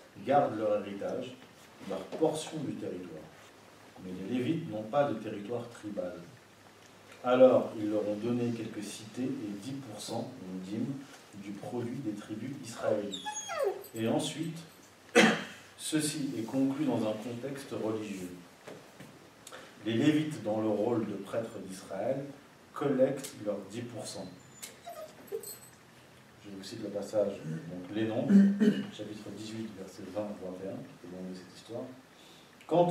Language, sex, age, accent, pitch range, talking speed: French, male, 40-59, French, 105-135 Hz, 125 wpm